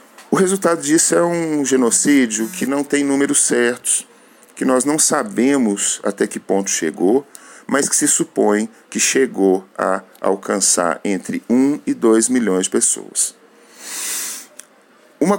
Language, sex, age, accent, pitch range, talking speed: English, male, 40-59, Brazilian, 100-130 Hz, 135 wpm